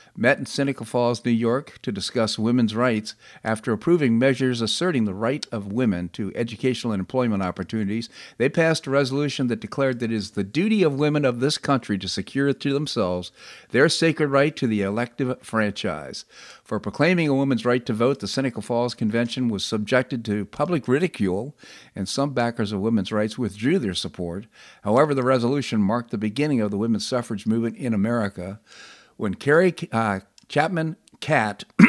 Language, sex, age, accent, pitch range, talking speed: English, male, 50-69, American, 105-130 Hz, 175 wpm